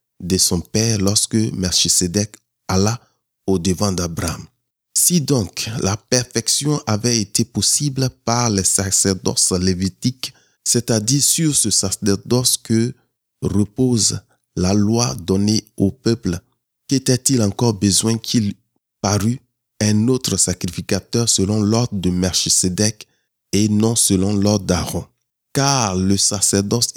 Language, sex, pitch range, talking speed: French, male, 95-120 Hz, 115 wpm